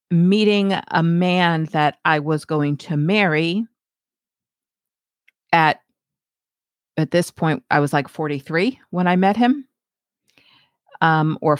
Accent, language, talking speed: American, English, 120 wpm